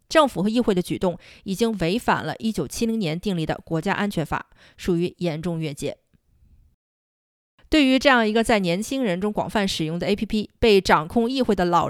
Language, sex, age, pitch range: Chinese, female, 20-39, 175-230 Hz